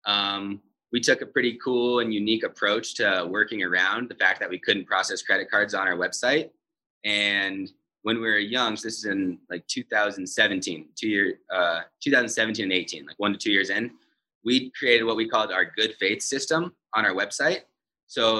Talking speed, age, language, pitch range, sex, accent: 190 wpm, 20-39, English, 100-125 Hz, male, American